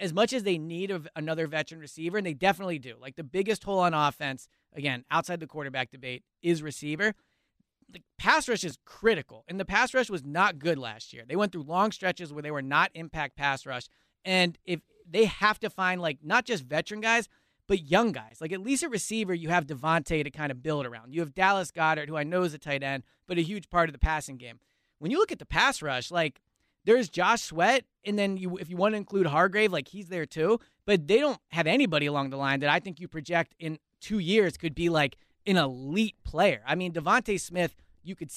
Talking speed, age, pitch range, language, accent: 230 wpm, 30-49, 150-195 Hz, English, American